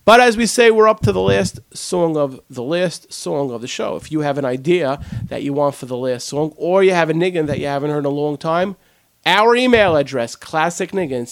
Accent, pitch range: American, 140-190 Hz